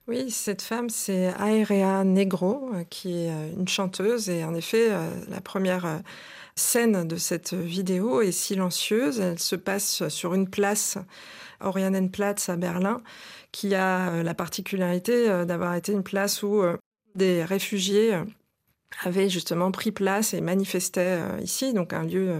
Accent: French